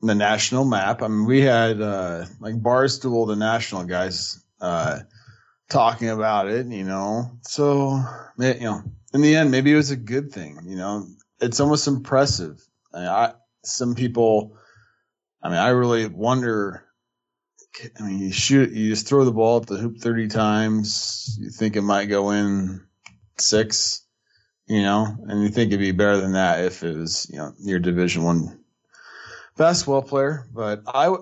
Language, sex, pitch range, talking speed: English, male, 100-120 Hz, 170 wpm